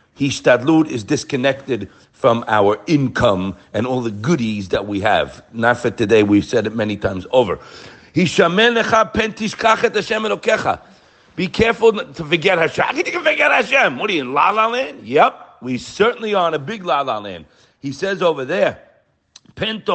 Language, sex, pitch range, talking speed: English, male, 135-210 Hz, 135 wpm